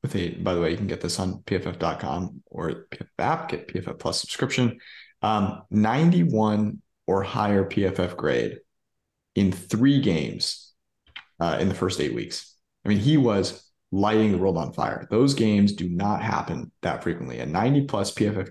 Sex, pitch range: male, 100-120 Hz